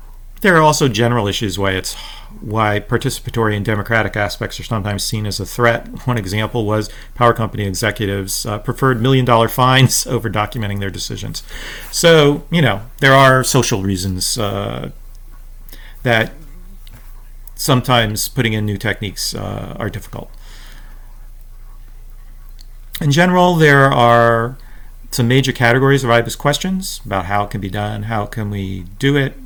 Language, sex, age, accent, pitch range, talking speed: English, male, 40-59, American, 105-125 Hz, 145 wpm